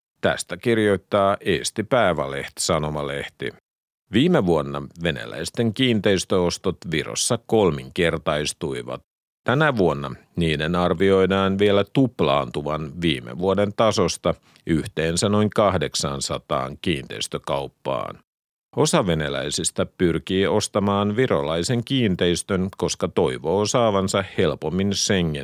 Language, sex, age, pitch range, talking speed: Finnish, male, 50-69, 80-105 Hz, 80 wpm